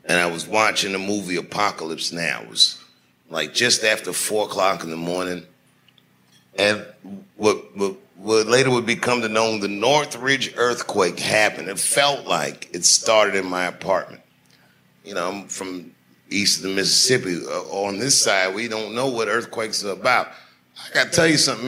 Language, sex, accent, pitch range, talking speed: Danish, male, American, 85-130 Hz, 175 wpm